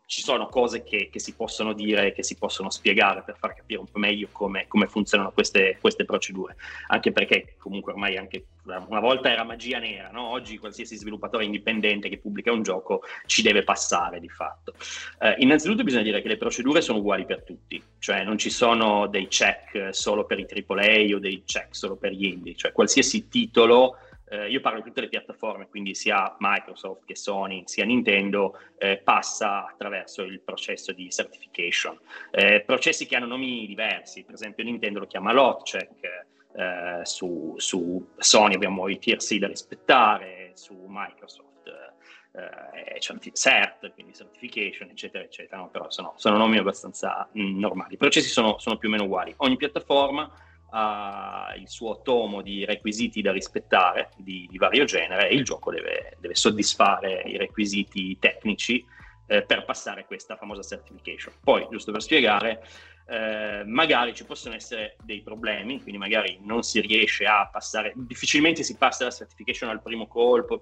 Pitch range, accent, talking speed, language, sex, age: 100-120 Hz, native, 170 wpm, Italian, male, 30-49